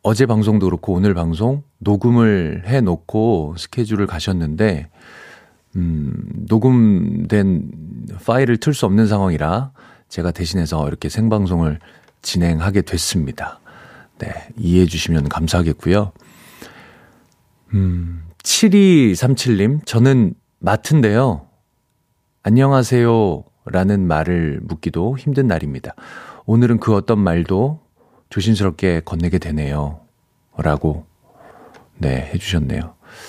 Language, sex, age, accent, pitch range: Korean, male, 40-59, native, 85-115 Hz